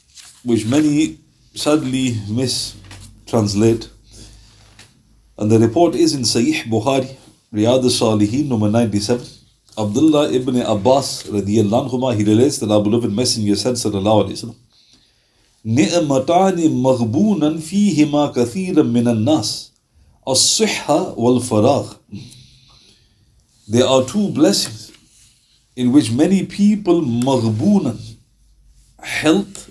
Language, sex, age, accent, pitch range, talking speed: English, male, 50-69, Indian, 110-140 Hz, 75 wpm